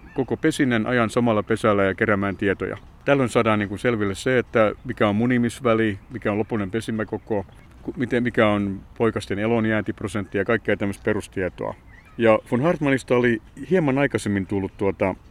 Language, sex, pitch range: Finnish, male, 100-120 Hz